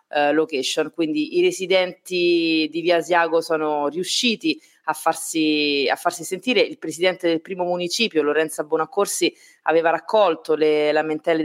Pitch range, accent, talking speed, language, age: 155-185 Hz, native, 125 wpm, Italian, 30-49